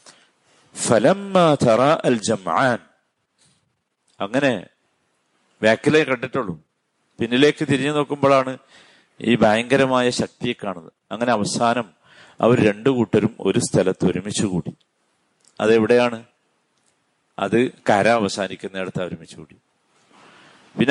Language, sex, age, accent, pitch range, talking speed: Malayalam, male, 50-69, native, 115-150 Hz, 70 wpm